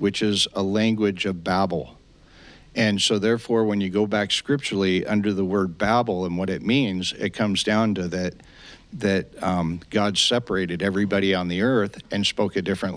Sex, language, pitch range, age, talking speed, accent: male, English, 95-110 Hz, 60-79, 180 wpm, American